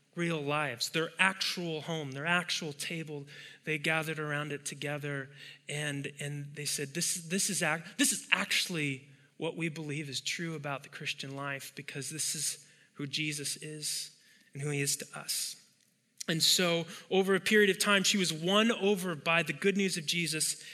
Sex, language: male, English